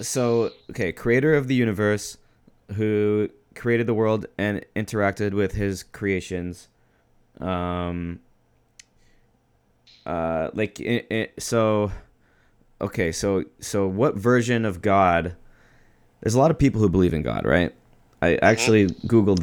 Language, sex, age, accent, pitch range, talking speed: English, male, 20-39, American, 90-110 Hz, 125 wpm